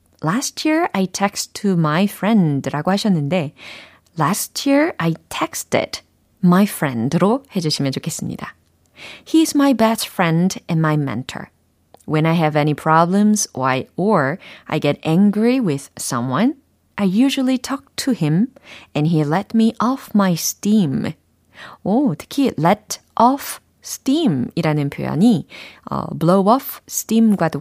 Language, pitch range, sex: Korean, 155-225 Hz, female